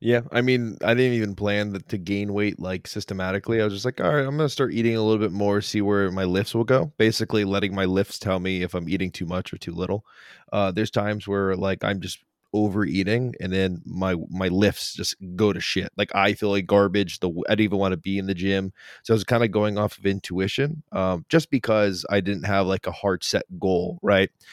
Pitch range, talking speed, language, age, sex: 95-110 Hz, 245 wpm, English, 20-39, male